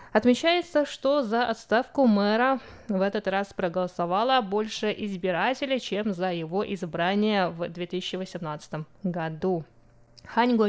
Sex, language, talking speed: female, Russian, 105 wpm